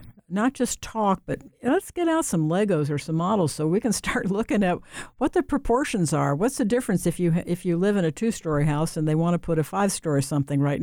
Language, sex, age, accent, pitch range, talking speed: English, female, 60-79, American, 150-205 Hz, 240 wpm